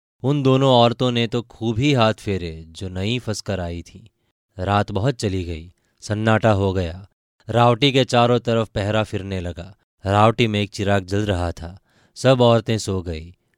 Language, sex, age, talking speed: Hindi, male, 20-39, 170 wpm